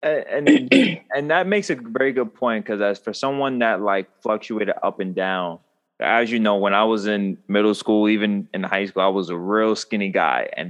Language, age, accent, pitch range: English, 20-39, American, 110-145 Hz